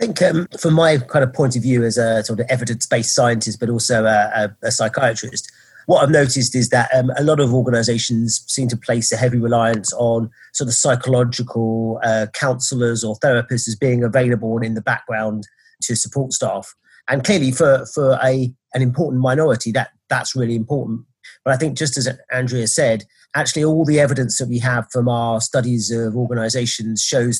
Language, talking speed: English, 195 wpm